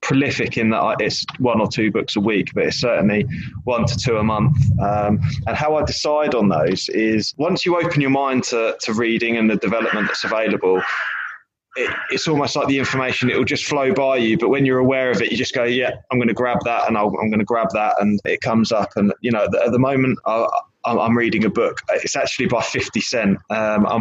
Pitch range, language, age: 105-135 Hz, English, 20-39